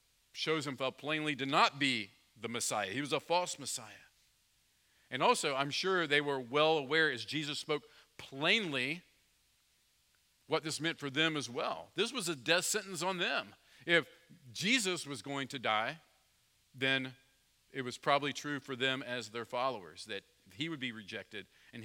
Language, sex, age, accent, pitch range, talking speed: English, male, 50-69, American, 105-145 Hz, 170 wpm